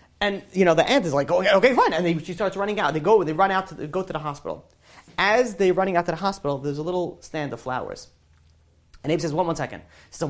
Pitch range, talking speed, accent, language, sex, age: 120-185 Hz, 275 wpm, American, English, male, 30-49